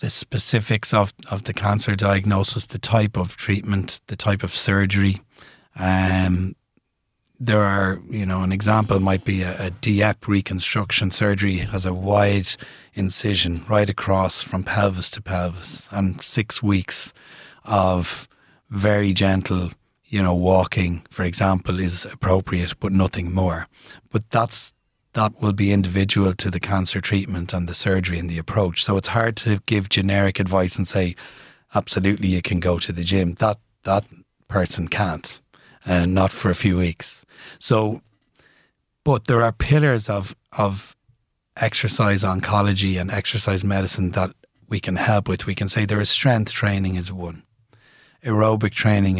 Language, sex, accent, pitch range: English, male, Irish, 95-105 Hz